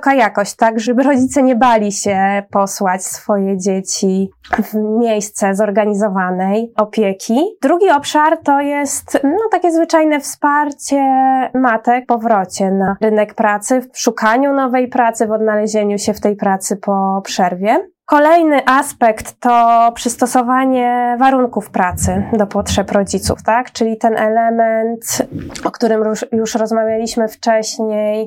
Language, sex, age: Polish, female, 20-39